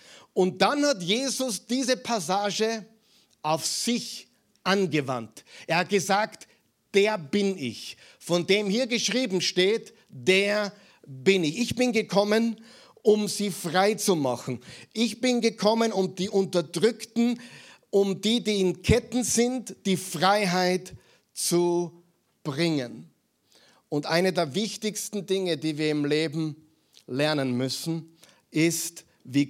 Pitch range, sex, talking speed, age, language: 160-205 Hz, male, 120 wpm, 50-69, German